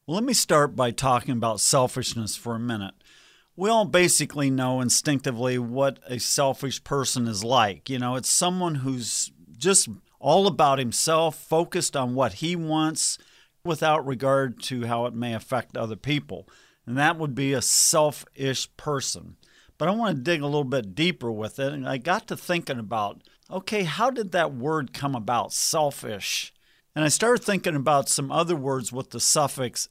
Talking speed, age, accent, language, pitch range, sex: 175 wpm, 50-69, American, English, 130-175 Hz, male